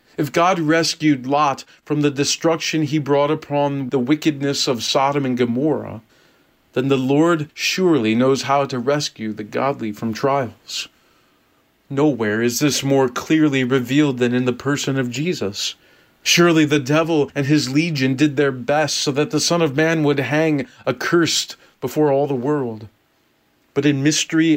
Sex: male